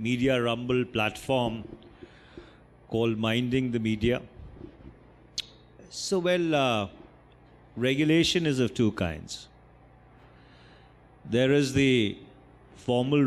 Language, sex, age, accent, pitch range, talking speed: English, male, 50-69, Indian, 115-135 Hz, 85 wpm